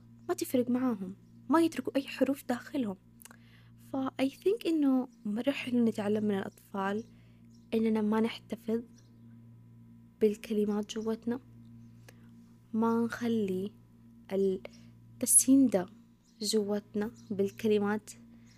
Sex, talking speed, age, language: female, 85 wpm, 20-39, Arabic